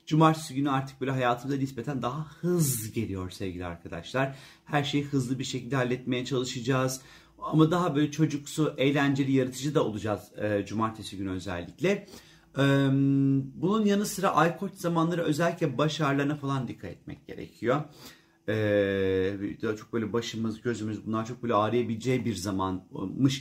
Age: 40-59